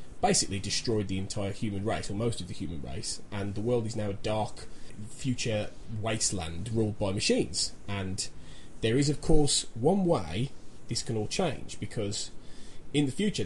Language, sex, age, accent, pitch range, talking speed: English, male, 20-39, British, 100-120 Hz, 175 wpm